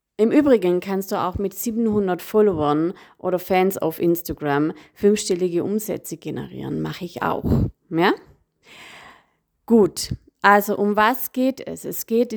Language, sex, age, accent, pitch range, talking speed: German, female, 30-49, German, 170-215 Hz, 125 wpm